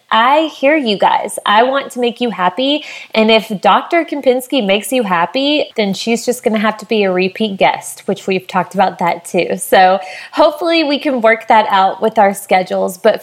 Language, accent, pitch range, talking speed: English, American, 185-240 Hz, 205 wpm